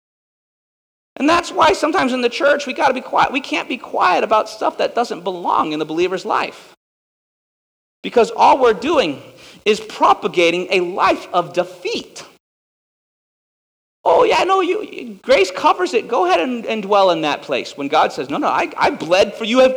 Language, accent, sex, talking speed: English, American, male, 185 wpm